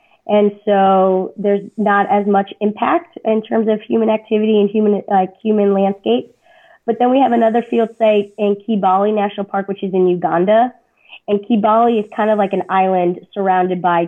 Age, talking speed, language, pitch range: 20-39, 180 wpm, English, 190-225 Hz